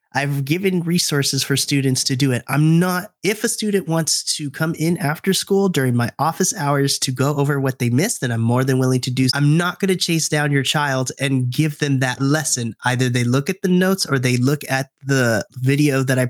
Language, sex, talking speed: English, male, 230 wpm